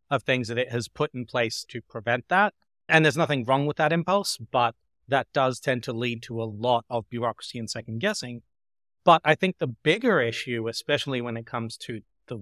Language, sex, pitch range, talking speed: English, male, 120-145 Hz, 210 wpm